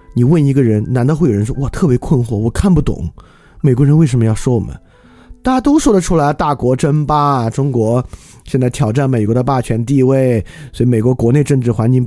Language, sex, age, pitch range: Chinese, male, 20-39, 110-155 Hz